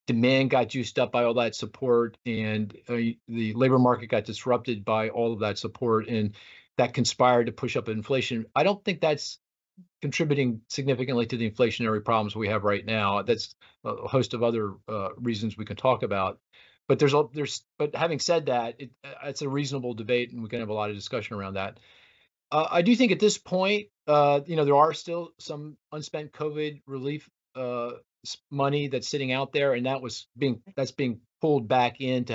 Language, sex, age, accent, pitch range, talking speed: English, male, 40-59, American, 115-145 Hz, 200 wpm